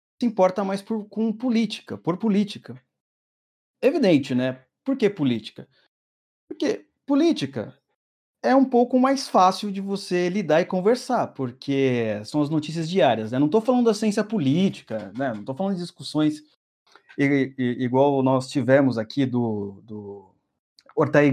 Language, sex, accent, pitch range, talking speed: Portuguese, male, Brazilian, 140-215 Hz, 140 wpm